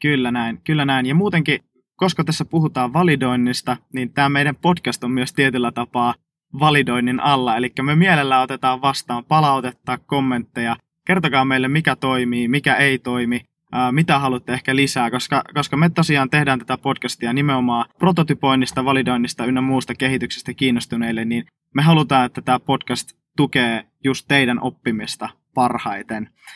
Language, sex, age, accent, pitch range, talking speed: Finnish, male, 20-39, native, 125-145 Hz, 140 wpm